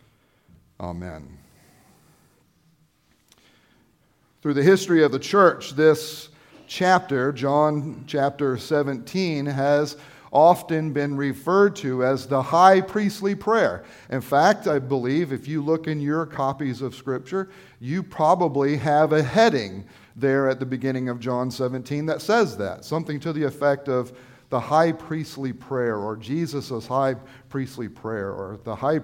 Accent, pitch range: American, 130-165 Hz